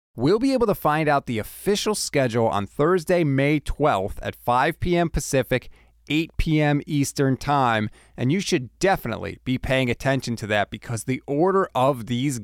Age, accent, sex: 30-49, American, male